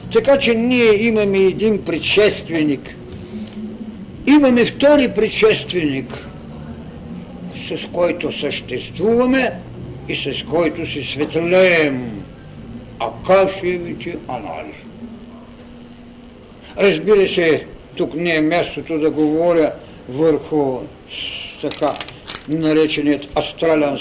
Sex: male